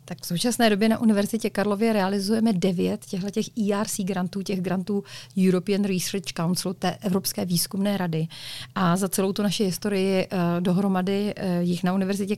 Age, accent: 40-59, native